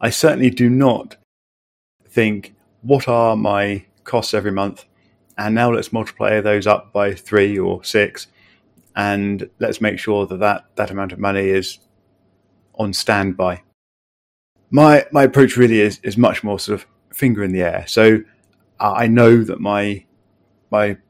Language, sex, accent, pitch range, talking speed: English, male, British, 95-115 Hz, 155 wpm